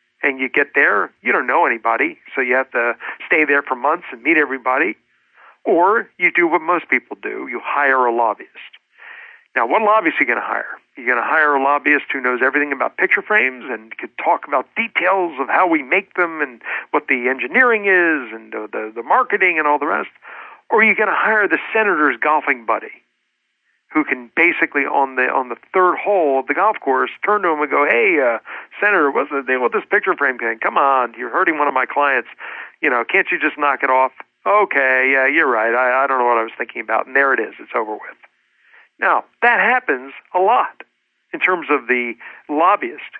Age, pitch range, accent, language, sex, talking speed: 50-69, 135-205 Hz, American, English, male, 225 wpm